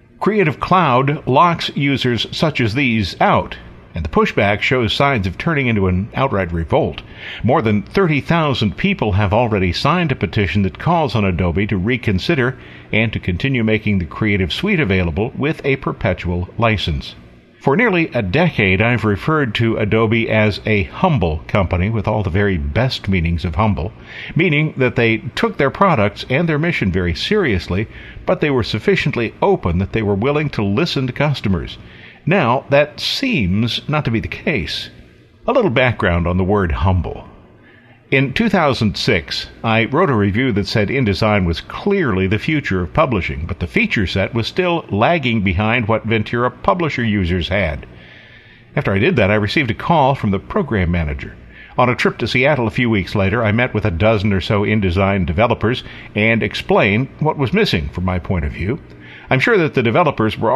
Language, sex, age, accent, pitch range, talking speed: English, male, 50-69, American, 95-135 Hz, 175 wpm